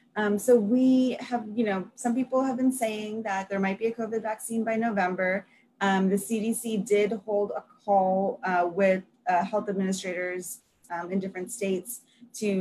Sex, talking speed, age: female, 175 wpm, 20-39